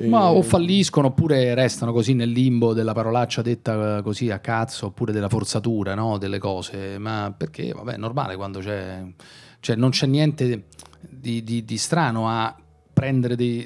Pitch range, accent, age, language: 110-140 Hz, native, 40-59, Italian